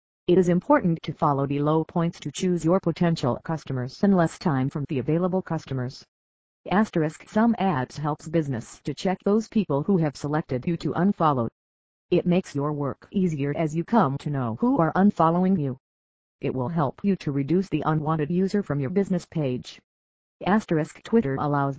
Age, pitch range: 40-59, 135-180 Hz